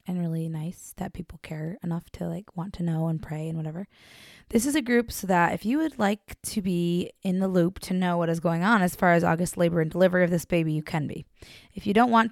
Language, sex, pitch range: English, female, 165-190 Hz